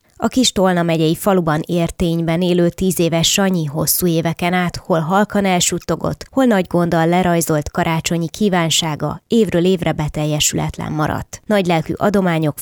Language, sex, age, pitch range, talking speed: Hungarian, female, 20-39, 155-180 Hz, 135 wpm